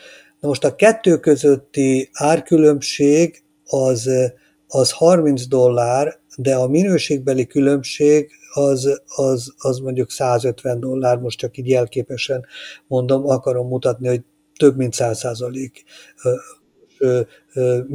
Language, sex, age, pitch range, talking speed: Hungarian, male, 50-69, 125-150 Hz, 105 wpm